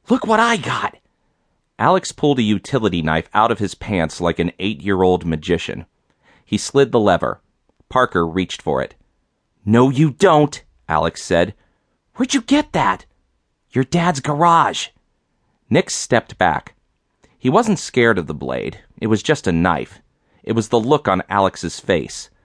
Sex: male